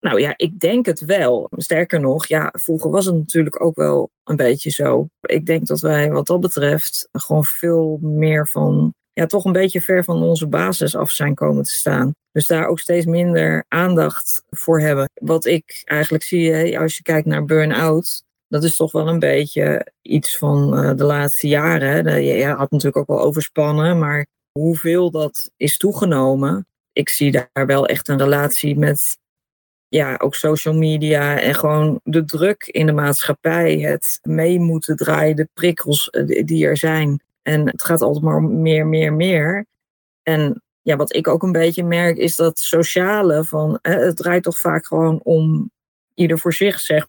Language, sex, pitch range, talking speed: Dutch, female, 145-170 Hz, 180 wpm